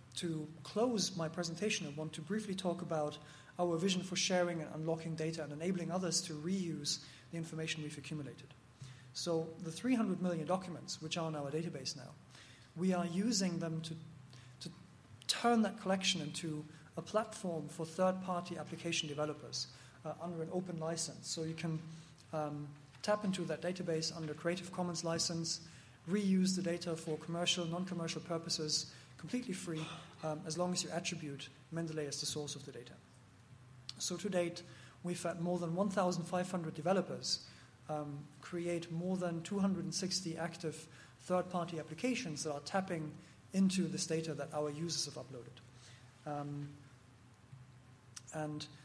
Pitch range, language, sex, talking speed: 150-180 Hz, English, male, 150 wpm